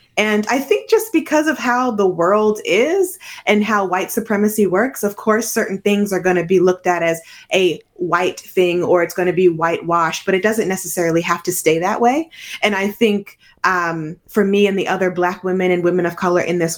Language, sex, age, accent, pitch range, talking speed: English, female, 20-39, American, 175-210 Hz, 210 wpm